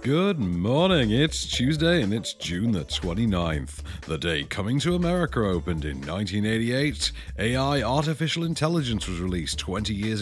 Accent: British